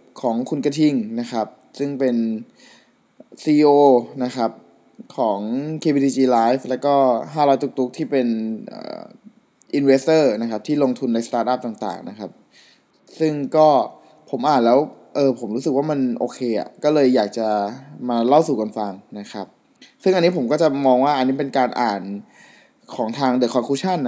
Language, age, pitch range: Thai, 20-39, 120-155 Hz